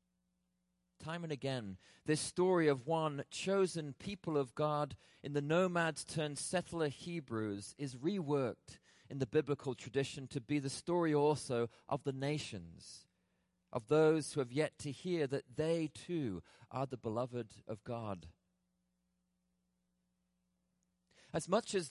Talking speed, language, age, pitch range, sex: 135 wpm, English, 40-59, 125-165 Hz, male